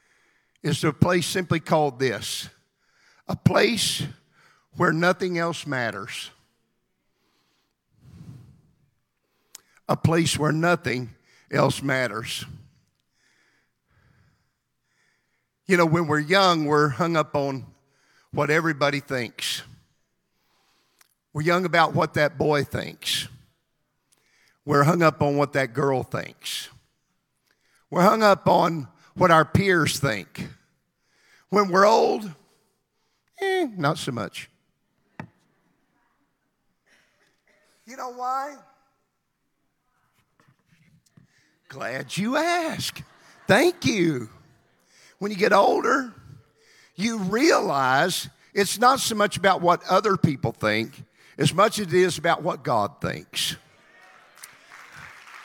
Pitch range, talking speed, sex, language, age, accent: 140-195 Hz, 100 wpm, male, English, 50-69, American